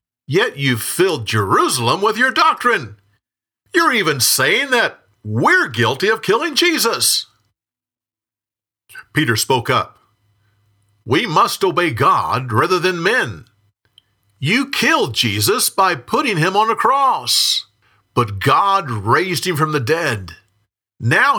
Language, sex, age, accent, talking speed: English, male, 50-69, American, 120 wpm